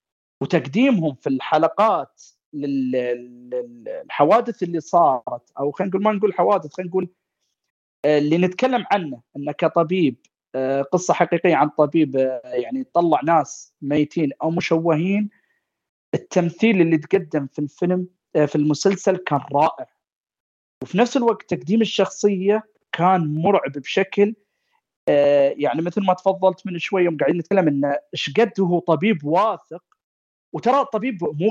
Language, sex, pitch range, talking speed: Arabic, male, 155-205 Hz, 120 wpm